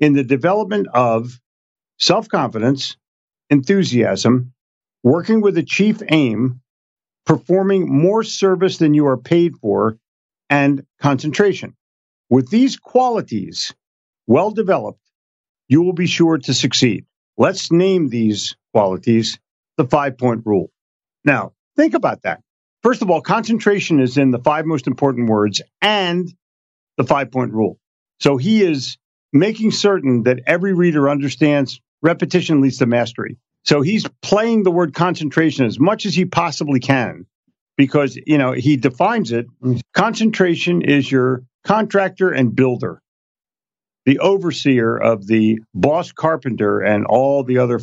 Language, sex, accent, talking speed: English, male, American, 135 wpm